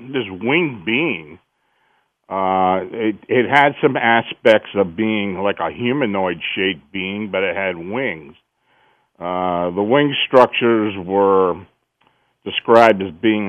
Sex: male